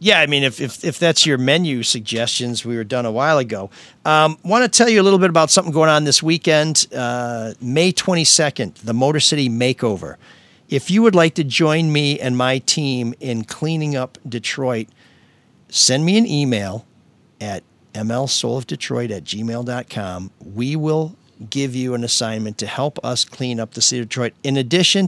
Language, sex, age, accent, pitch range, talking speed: English, male, 50-69, American, 120-155 Hz, 185 wpm